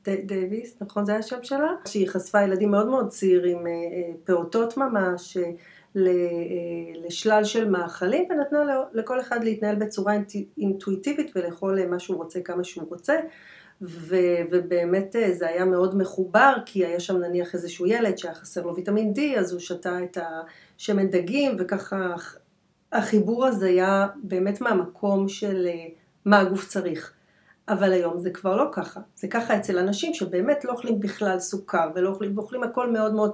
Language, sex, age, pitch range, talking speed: Hebrew, female, 40-59, 180-215 Hz, 150 wpm